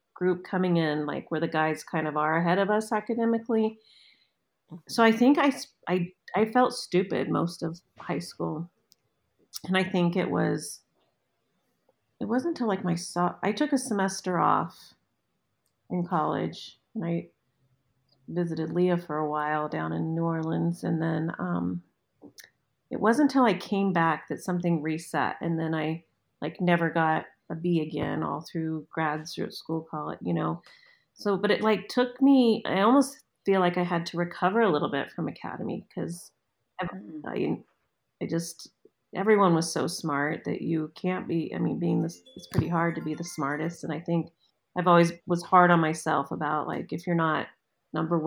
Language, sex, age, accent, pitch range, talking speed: English, female, 40-59, American, 160-195 Hz, 175 wpm